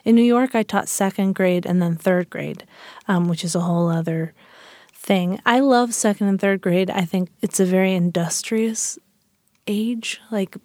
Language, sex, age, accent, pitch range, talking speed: English, female, 30-49, American, 175-205 Hz, 180 wpm